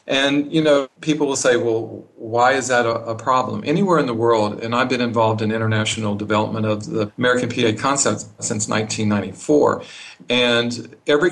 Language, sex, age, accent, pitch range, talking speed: English, male, 50-69, American, 110-130 Hz, 175 wpm